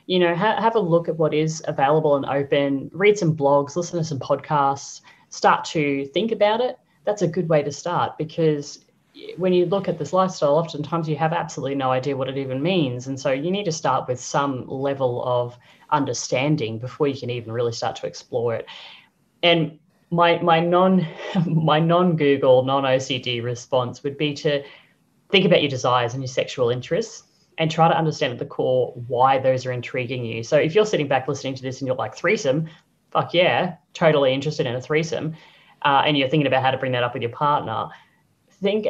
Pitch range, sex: 130-170 Hz, female